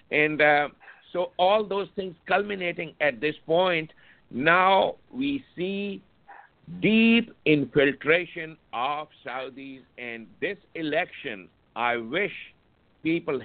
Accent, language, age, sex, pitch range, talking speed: Indian, English, 60-79, male, 155-195 Hz, 105 wpm